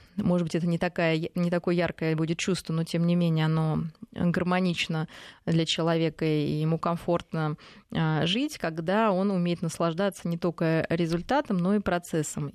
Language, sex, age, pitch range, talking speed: Russian, female, 20-39, 165-195 Hz, 160 wpm